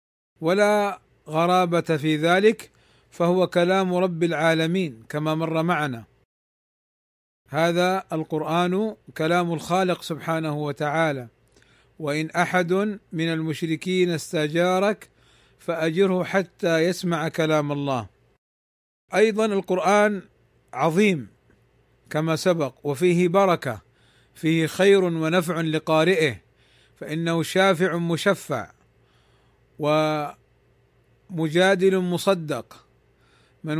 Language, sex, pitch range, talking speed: Arabic, male, 145-180 Hz, 80 wpm